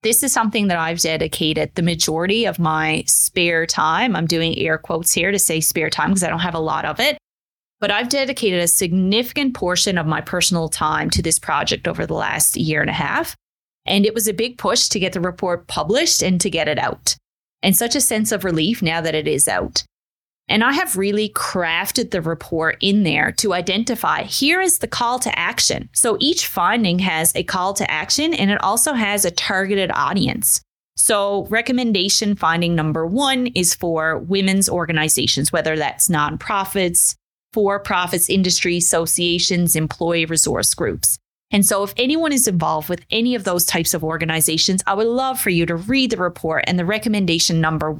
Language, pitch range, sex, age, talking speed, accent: English, 165-215 Hz, female, 20-39, 190 wpm, American